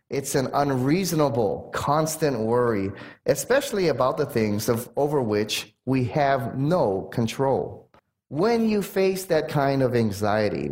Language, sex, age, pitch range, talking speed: English, male, 30-49, 120-160 Hz, 130 wpm